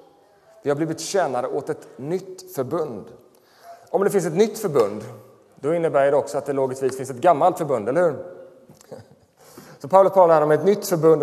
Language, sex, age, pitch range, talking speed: Swedish, male, 30-49, 150-195 Hz, 180 wpm